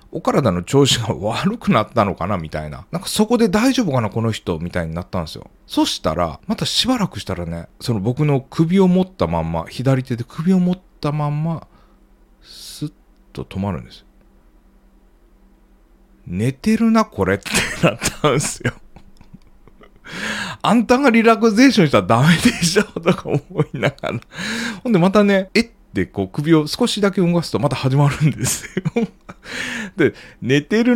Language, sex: Japanese, male